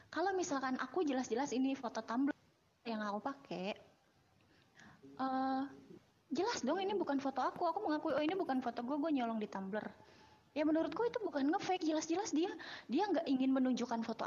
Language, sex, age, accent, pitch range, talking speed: Indonesian, female, 20-39, native, 220-300 Hz, 170 wpm